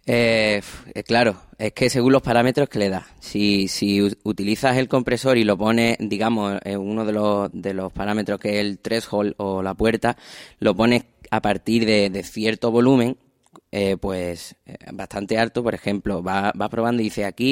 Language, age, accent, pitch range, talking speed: Spanish, 20-39, Spanish, 105-125 Hz, 180 wpm